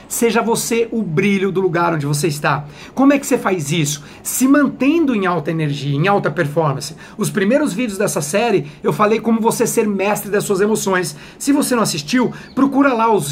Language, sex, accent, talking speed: Portuguese, male, Brazilian, 200 wpm